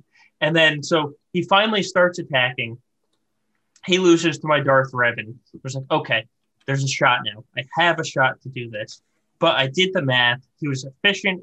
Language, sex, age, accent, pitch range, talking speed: English, male, 20-39, American, 120-155 Hz, 190 wpm